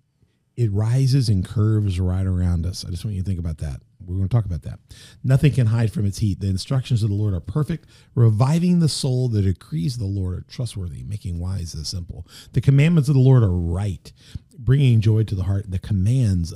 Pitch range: 95-135 Hz